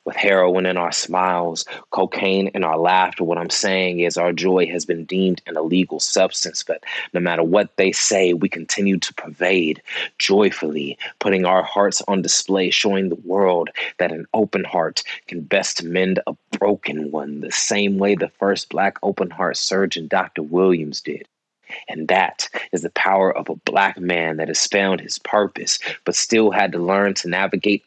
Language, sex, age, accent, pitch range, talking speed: English, male, 30-49, American, 85-95 Hz, 180 wpm